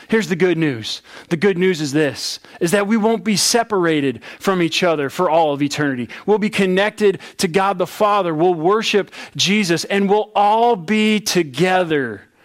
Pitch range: 155-195 Hz